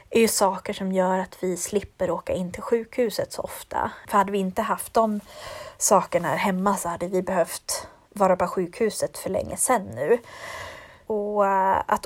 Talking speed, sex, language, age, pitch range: 180 wpm, female, Swedish, 30-49, 185-220 Hz